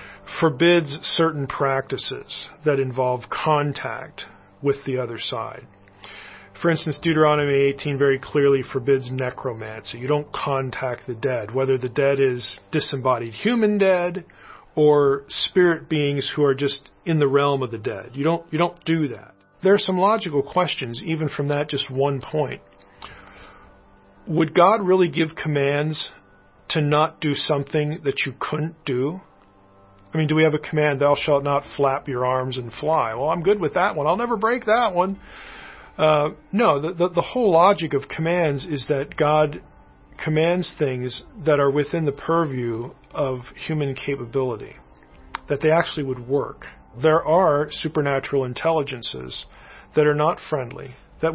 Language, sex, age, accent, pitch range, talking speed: English, male, 40-59, American, 135-160 Hz, 155 wpm